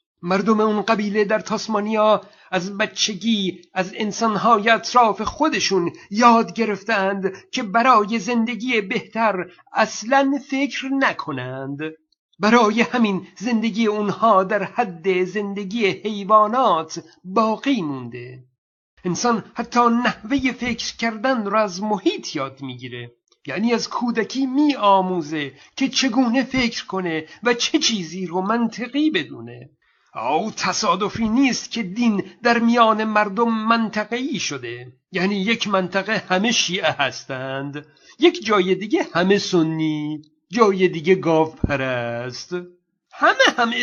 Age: 50-69